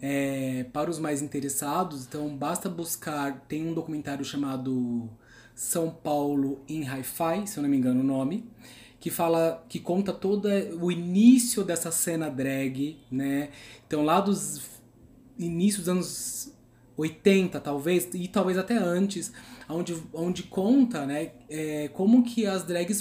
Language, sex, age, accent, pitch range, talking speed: Portuguese, male, 20-39, Brazilian, 135-195 Hz, 140 wpm